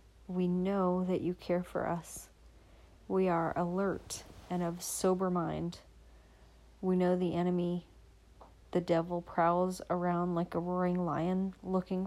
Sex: female